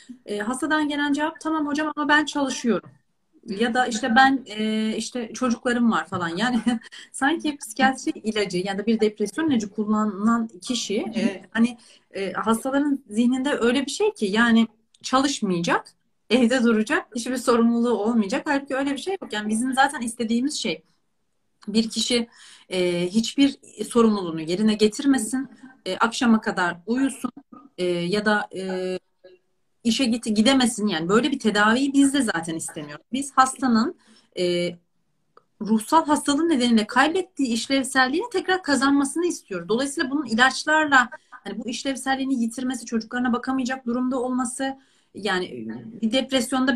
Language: Turkish